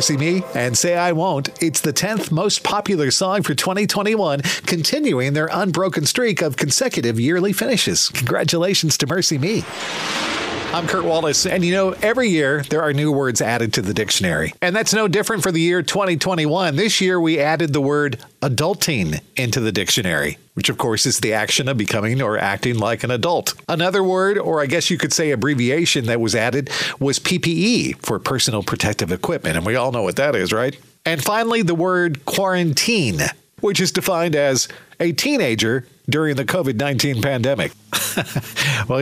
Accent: American